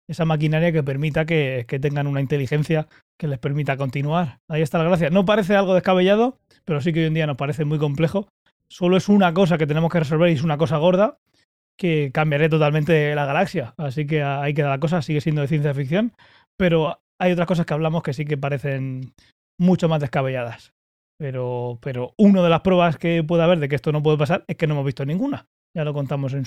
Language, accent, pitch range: Spanish, Spanish, 145-180 Hz